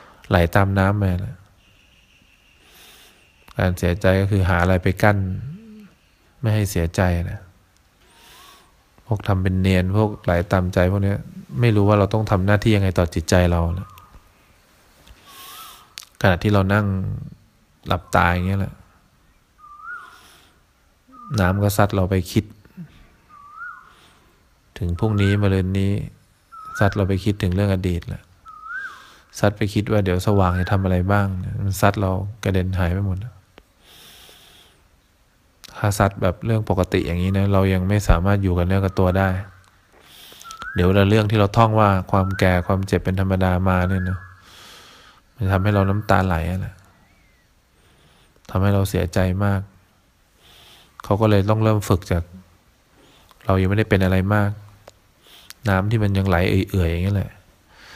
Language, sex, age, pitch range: English, male, 20-39, 95-105 Hz